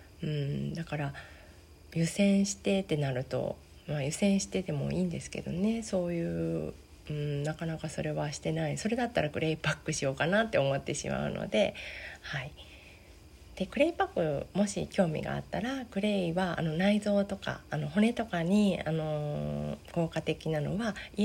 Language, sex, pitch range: Japanese, female, 135-195 Hz